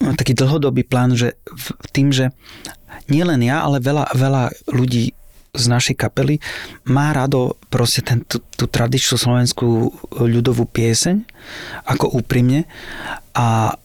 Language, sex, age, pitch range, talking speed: Slovak, male, 30-49, 120-140 Hz, 115 wpm